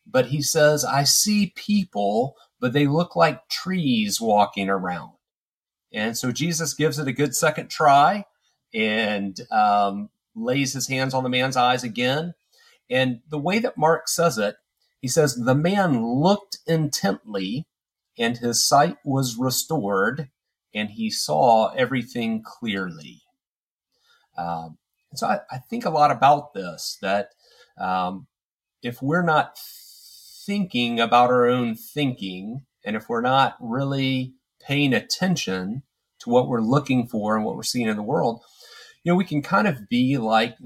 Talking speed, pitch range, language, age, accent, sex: 150 wpm, 115-160 Hz, English, 40-59, American, male